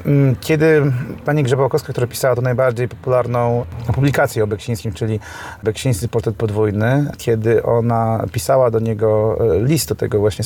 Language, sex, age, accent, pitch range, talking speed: Polish, male, 30-49, native, 110-130 Hz, 140 wpm